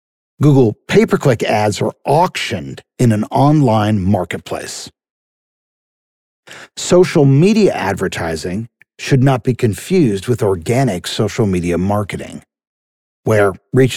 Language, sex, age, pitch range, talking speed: English, male, 50-69, 105-140 Hz, 100 wpm